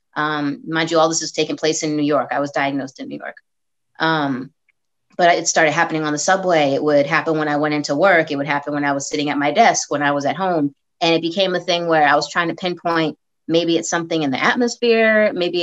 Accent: American